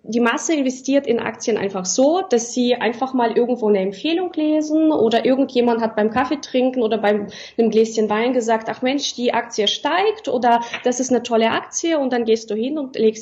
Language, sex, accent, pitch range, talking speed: German, female, German, 220-270 Hz, 205 wpm